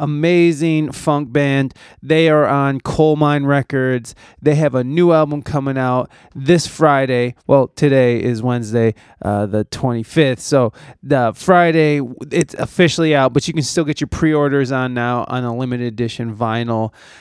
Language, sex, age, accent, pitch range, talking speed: English, male, 20-39, American, 130-160 Hz, 155 wpm